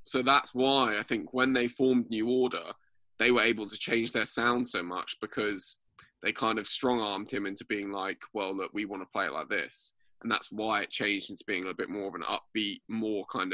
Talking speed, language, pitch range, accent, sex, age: 235 wpm, English, 105-130 Hz, British, male, 10-29